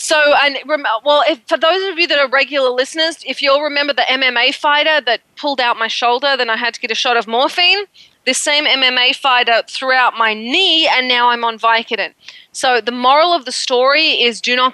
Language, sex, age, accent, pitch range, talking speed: English, female, 20-39, Australian, 225-270 Hz, 215 wpm